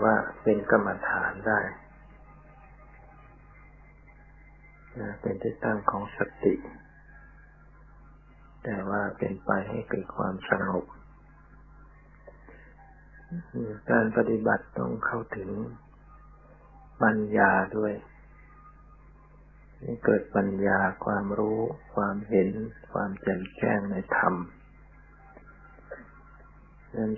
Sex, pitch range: male, 100-125 Hz